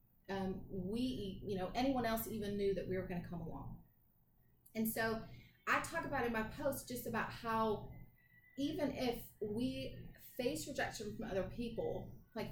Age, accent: 30-49, American